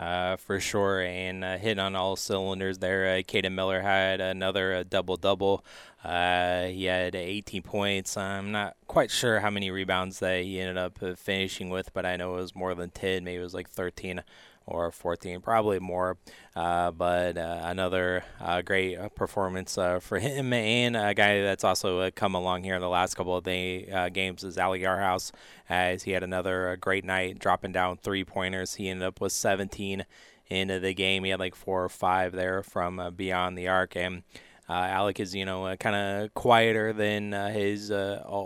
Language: English